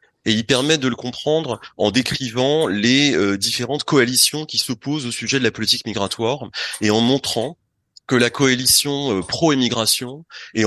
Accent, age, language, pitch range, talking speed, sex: French, 30-49, French, 110-135 Hz, 165 wpm, male